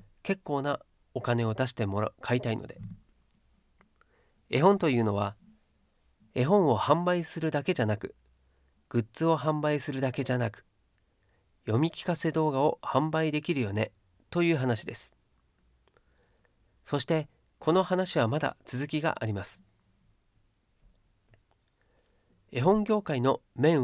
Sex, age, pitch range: male, 40-59, 100-155 Hz